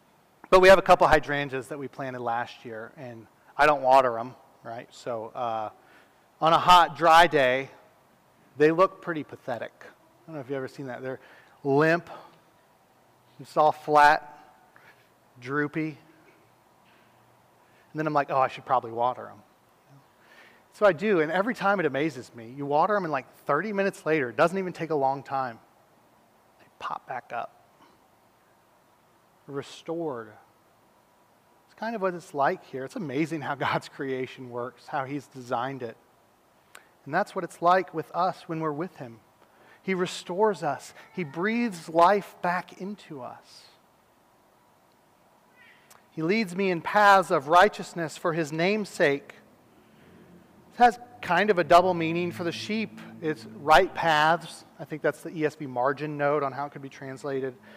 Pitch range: 135-180 Hz